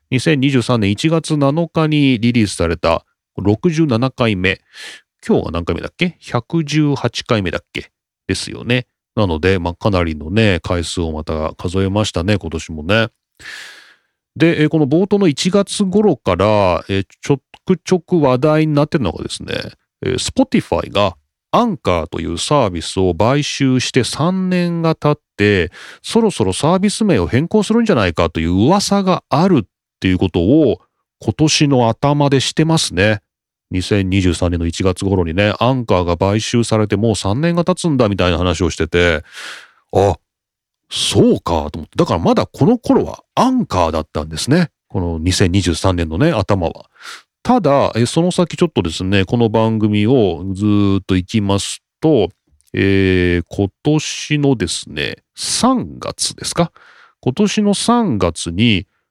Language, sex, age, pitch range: Japanese, male, 40-59, 95-155 Hz